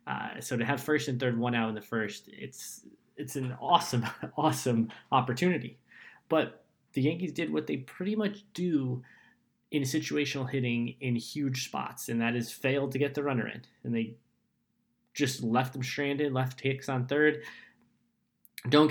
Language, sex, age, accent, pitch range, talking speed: English, male, 20-39, American, 120-145 Hz, 165 wpm